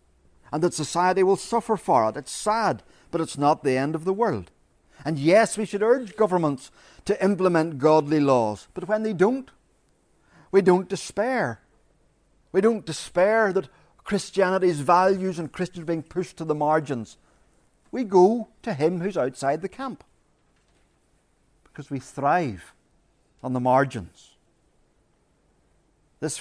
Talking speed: 140 wpm